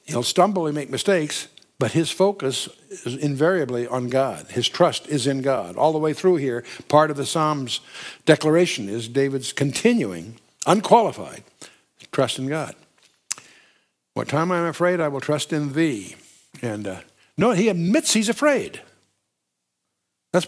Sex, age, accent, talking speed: male, 60-79, American, 150 wpm